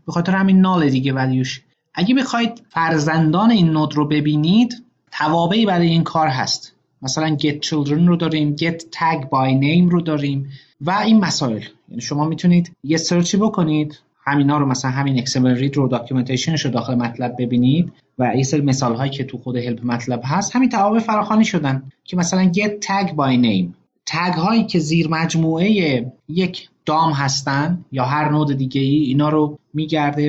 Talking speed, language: 175 wpm, Persian